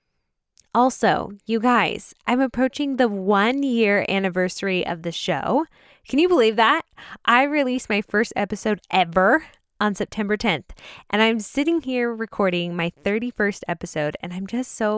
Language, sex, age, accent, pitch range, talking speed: English, female, 10-29, American, 185-235 Hz, 145 wpm